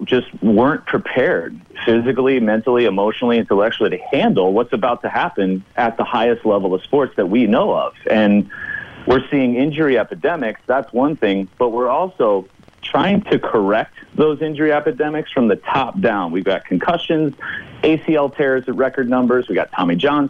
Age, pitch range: 30-49, 105-150 Hz